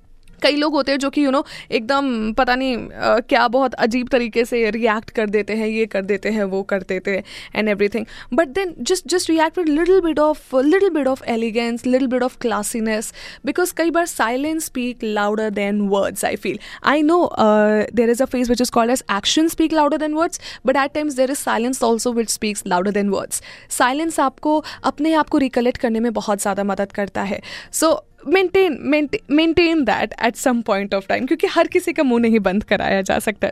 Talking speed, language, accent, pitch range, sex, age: 215 wpm, Hindi, native, 215-300 Hz, female, 20-39